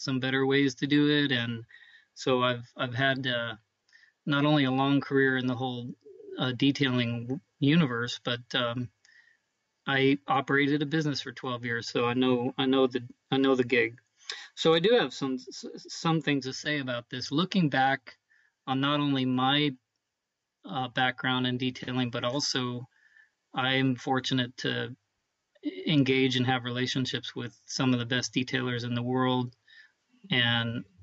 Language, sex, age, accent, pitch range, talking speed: English, male, 40-59, American, 125-140 Hz, 160 wpm